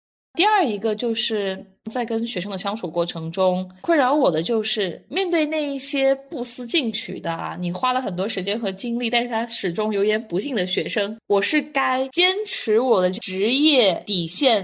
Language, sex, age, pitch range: Chinese, female, 20-39, 180-245 Hz